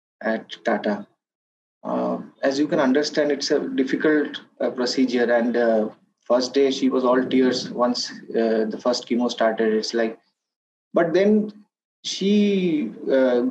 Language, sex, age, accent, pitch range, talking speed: English, male, 20-39, Indian, 130-180 Hz, 140 wpm